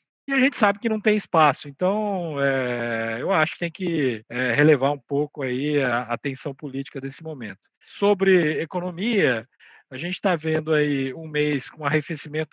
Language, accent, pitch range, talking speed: Portuguese, Brazilian, 130-165 Hz, 170 wpm